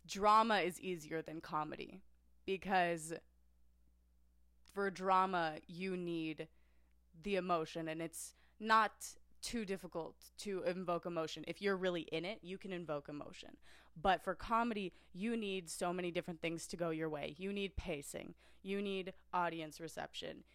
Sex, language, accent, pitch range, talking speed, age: female, English, American, 160-210 Hz, 145 wpm, 20-39